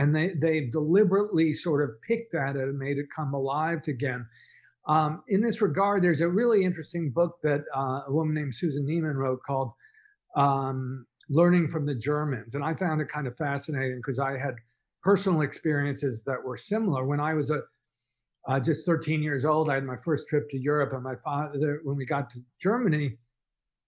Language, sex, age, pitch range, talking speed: English, male, 50-69, 145-180 Hz, 195 wpm